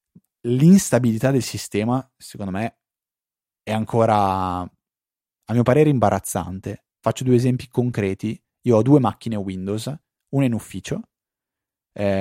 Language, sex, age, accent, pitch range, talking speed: Italian, male, 30-49, native, 105-140 Hz, 120 wpm